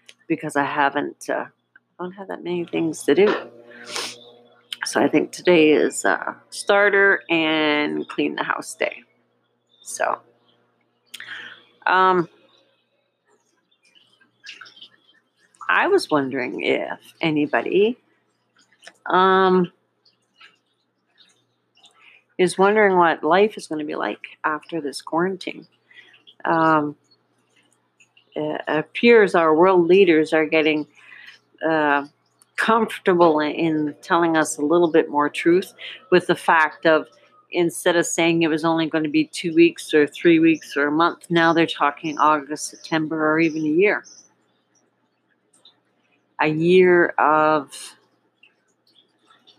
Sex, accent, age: female, American, 40-59